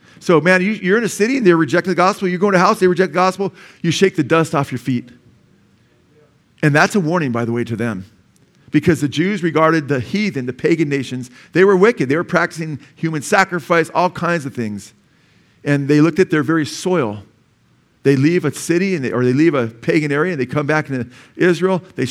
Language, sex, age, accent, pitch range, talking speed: English, male, 40-59, American, 125-165 Hz, 230 wpm